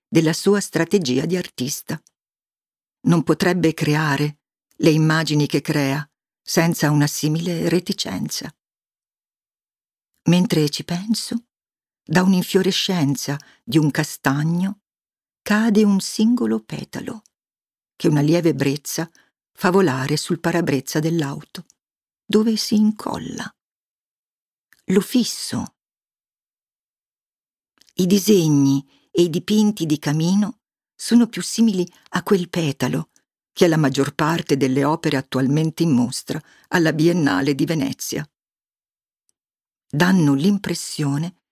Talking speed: 105 wpm